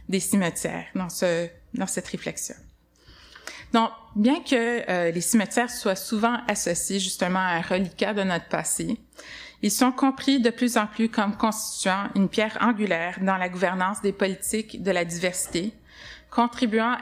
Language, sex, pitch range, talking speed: French, female, 185-230 Hz, 155 wpm